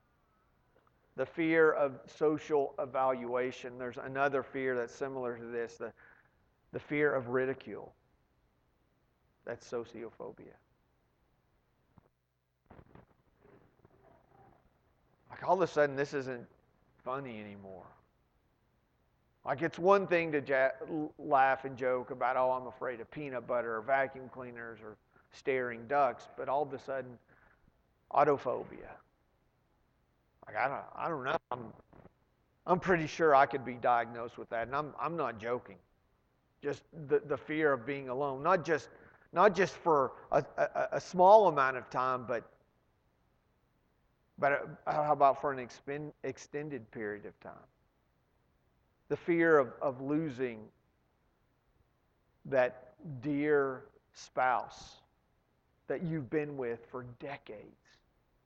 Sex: male